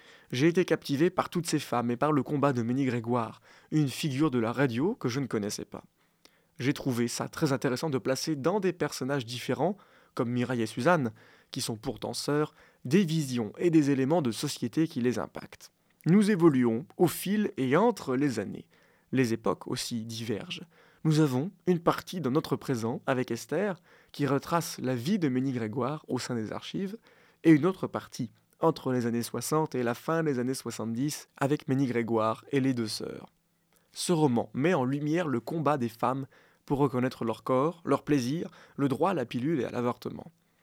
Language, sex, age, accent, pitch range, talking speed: French, male, 20-39, French, 120-160 Hz, 190 wpm